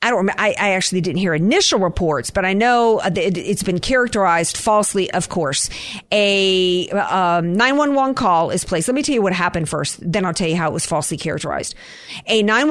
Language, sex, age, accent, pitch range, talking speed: English, female, 50-69, American, 190-245 Hz, 205 wpm